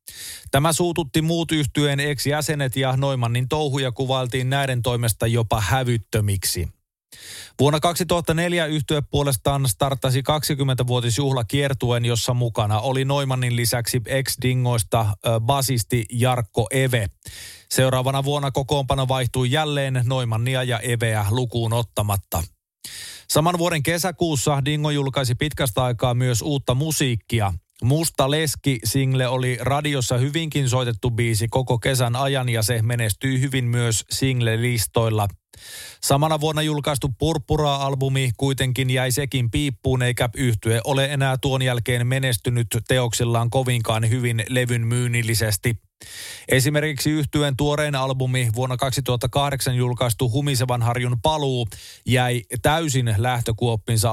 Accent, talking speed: native, 110 wpm